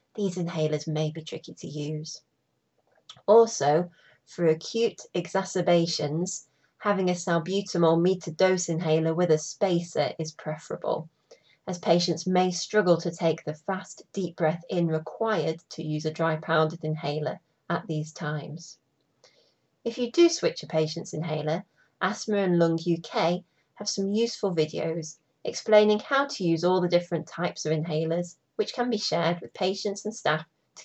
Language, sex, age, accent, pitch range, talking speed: English, female, 30-49, British, 155-195 Hz, 150 wpm